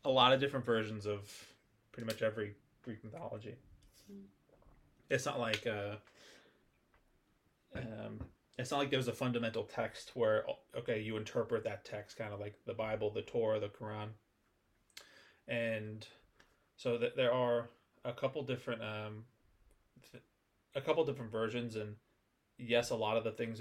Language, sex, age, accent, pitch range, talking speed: English, male, 20-39, American, 105-125 Hz, 150 wpm